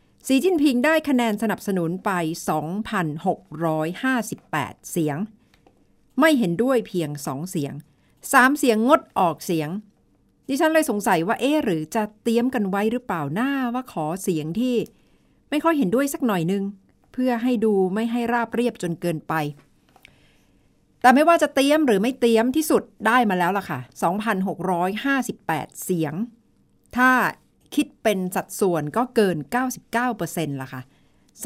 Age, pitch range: 60-79, 165-240 Hz